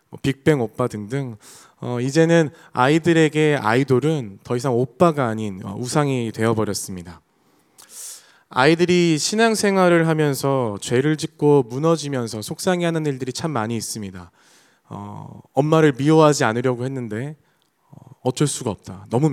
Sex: male